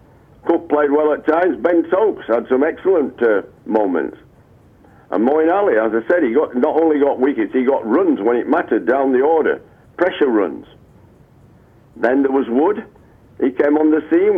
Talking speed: 180 wpm